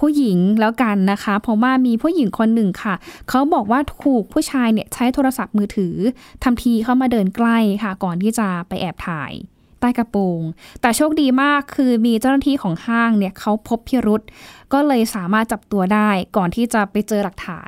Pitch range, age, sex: 205-265 Hz, 10-29, female